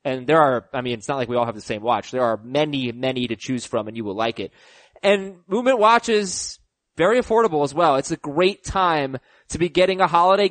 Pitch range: 145-205 Hz